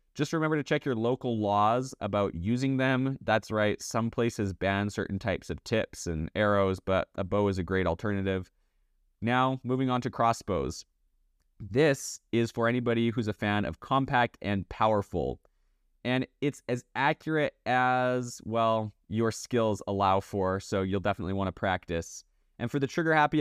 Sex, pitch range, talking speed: male, 95-130 Hz, 165 wpm